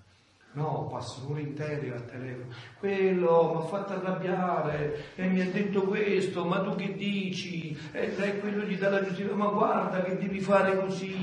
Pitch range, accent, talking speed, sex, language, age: 120-190 Hz, native, 175 wpm, male, Italian, 40-59